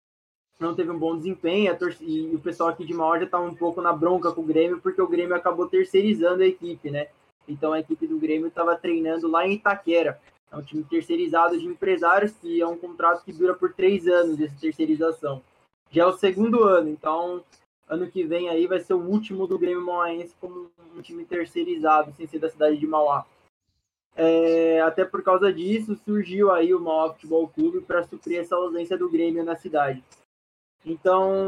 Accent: Brazilian